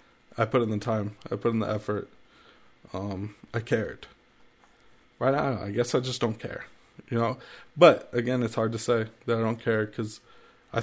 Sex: male